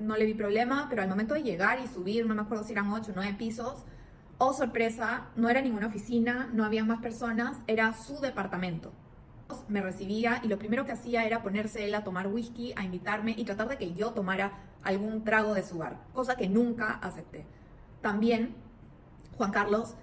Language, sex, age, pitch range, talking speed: Spanish, female, 20-39, 205-235 Hz, 200 wpm